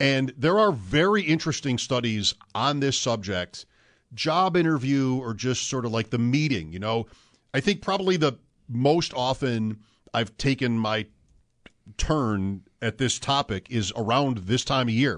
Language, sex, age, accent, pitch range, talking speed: English, male, 50-69, American, 115-170 Hz, 155 wpm